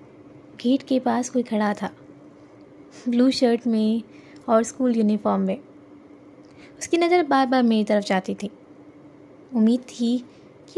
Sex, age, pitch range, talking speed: female, 20-39, 230-285 Hz, 135 wpm